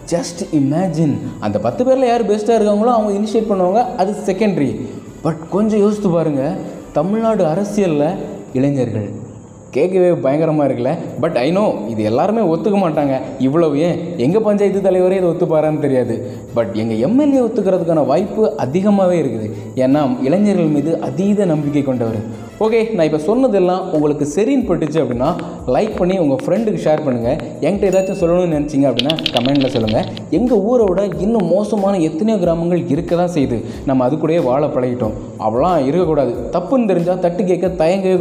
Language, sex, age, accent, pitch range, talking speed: Tamil, male, 20-39, native, 140-200 Hz, 145 wpm